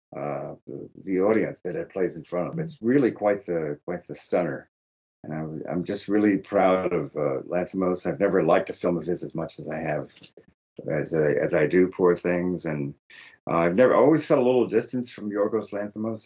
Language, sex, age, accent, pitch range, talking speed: English, male, 60-79, American, 80-115 Hz, 205 wpm